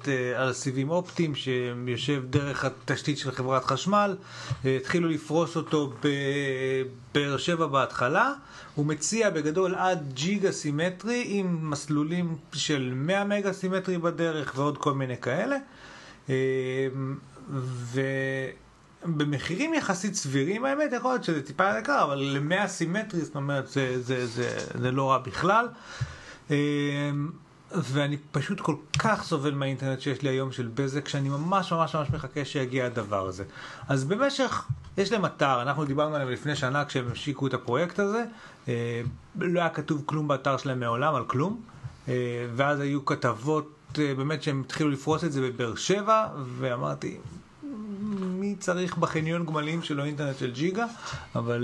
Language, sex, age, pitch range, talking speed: Hebrew, male, 40-59, 130-170 Hz, 140 wpm